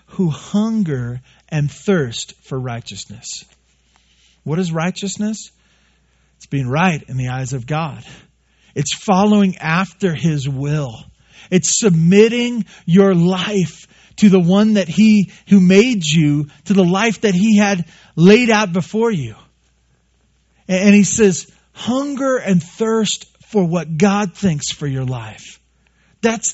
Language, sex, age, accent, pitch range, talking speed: English, male, 40-59, American, 125-190 Hz, 130 wpm